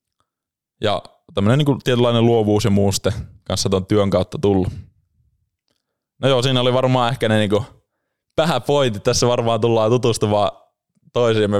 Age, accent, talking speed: 20-39, native, 140 wpm